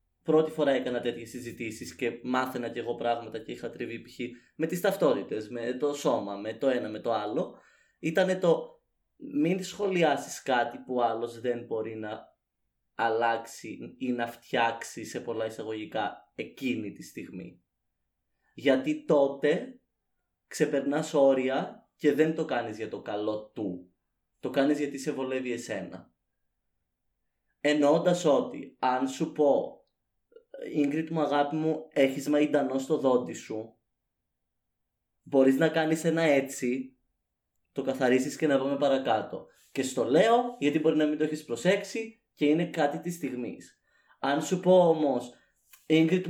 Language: Greek